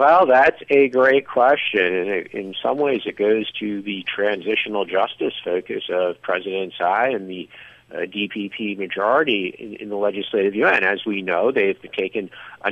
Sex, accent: male, American